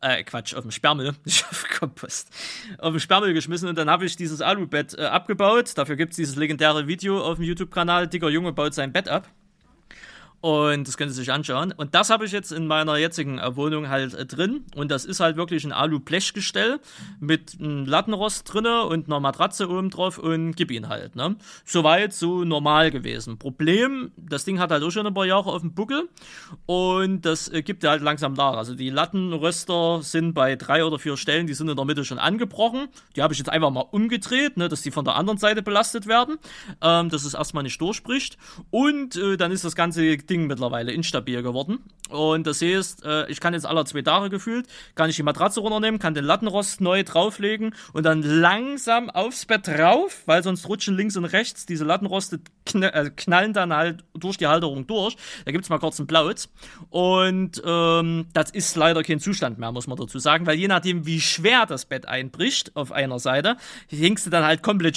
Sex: male